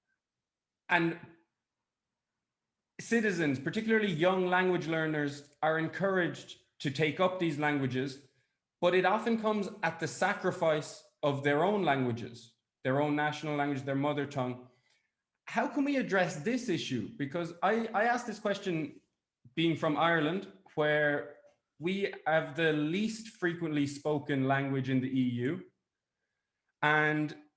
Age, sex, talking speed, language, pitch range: 20-39, male, 125 wpm, English, 145-180 Hz